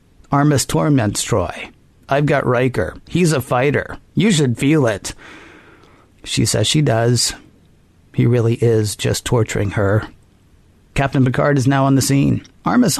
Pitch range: 115-140 Hz